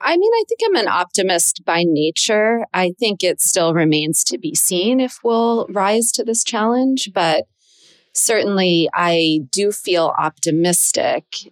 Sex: female